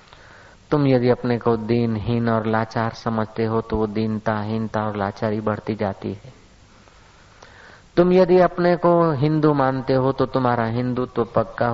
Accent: native